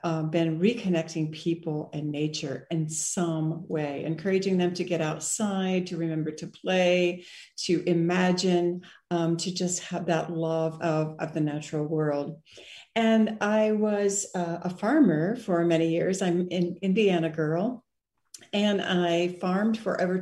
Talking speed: 145 wpm